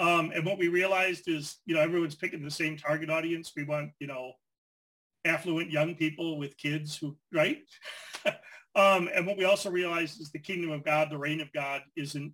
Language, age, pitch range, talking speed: English, 40-59, 150-175 Hz, 200 wpm